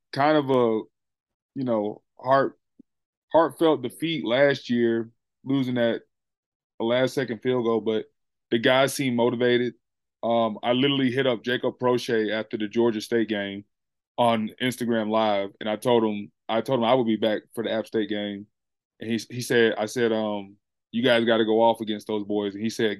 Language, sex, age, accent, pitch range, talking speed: English, male, 20-39, American, 110-130 Hz, 190 wpm